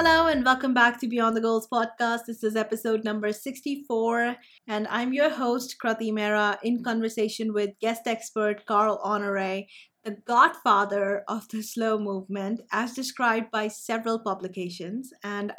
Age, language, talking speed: 30-49, English, 150 wpm